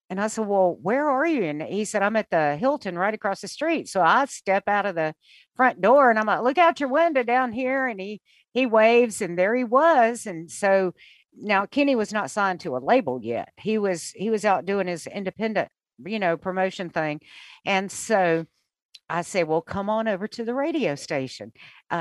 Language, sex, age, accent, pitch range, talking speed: English, female, 50-69, American, 180-235 Hz, 215 wpm